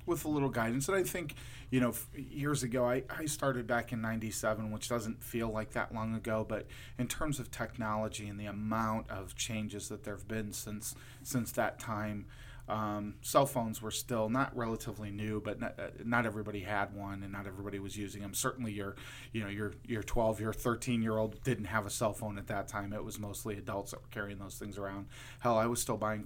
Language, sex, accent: English, male, American